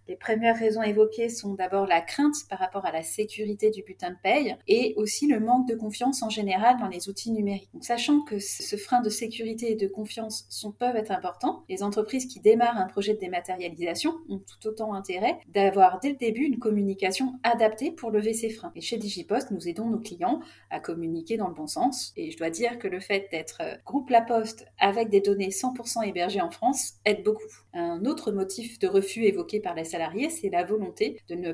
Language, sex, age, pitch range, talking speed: French, female, 30-49, 190-240 Hz, 215 wpm